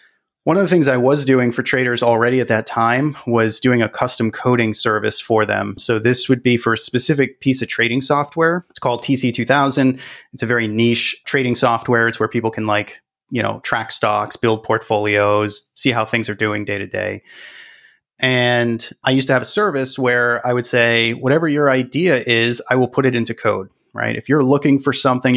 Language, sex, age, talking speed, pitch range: English, male, 30-49, 205 wpm, 115-140 Hz